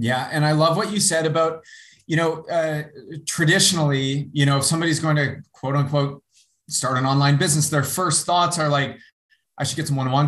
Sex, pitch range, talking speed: male, 130-160 Hz, 200 wpm